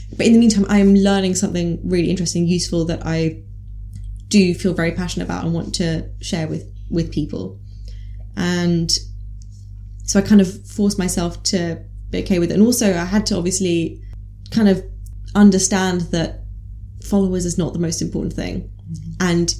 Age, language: 10-29, English